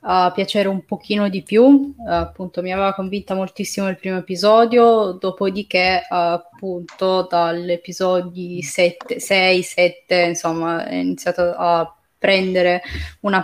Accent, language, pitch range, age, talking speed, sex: native, Italian, 175-205 Hz, 20-39, 125 wpm, female